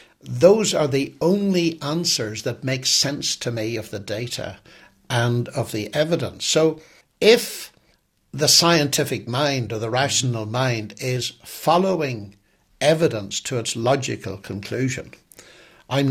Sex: male